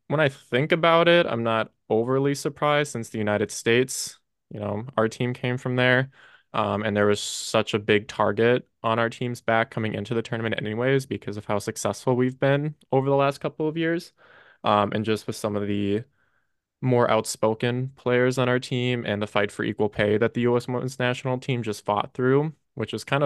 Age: 20-39